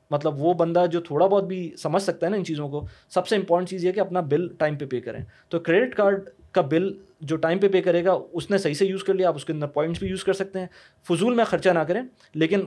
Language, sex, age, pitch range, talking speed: Urdu, male, 20-39, 155-190 Hz, 295 wpm